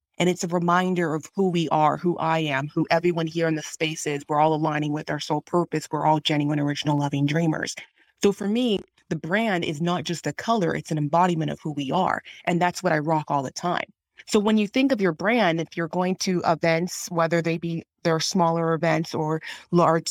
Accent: American